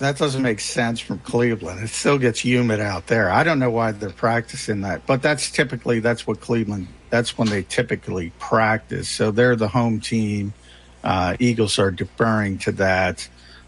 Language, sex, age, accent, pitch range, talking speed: English, male, 50-69, American, 100-130 Hz, 180 wpm